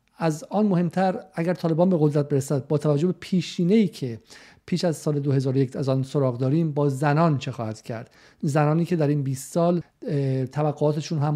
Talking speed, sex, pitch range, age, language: 180 wpm, male, 145-165 Hz, 50-69, Persian